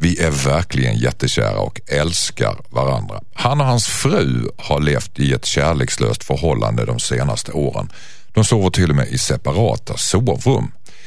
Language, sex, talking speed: Swedish, male, 150 wpm